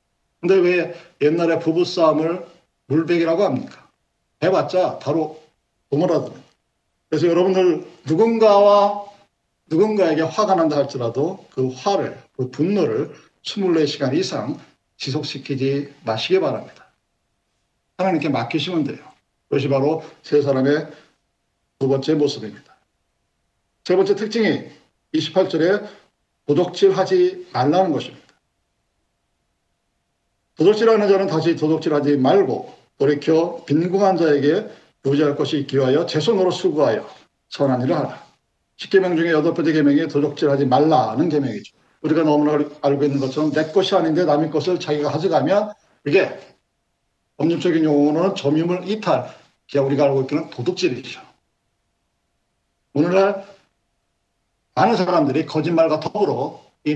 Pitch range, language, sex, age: 145-185 Hz, Korean, male, 50-69